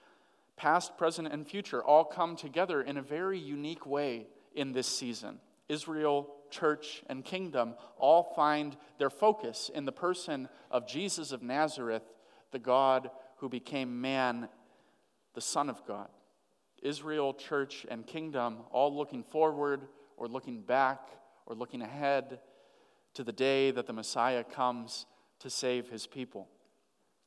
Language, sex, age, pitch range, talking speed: English, male, 40-59, 125-155 Hz, 140 wpm